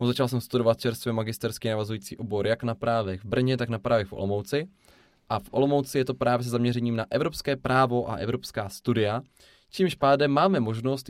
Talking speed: 190 wpm